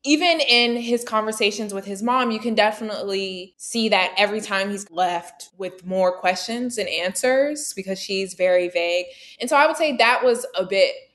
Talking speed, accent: 185 wpm, American